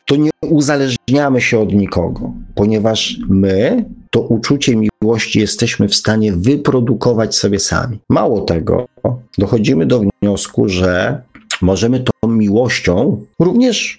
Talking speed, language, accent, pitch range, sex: 115 wpm, Polish, native, 100-135 Hz, male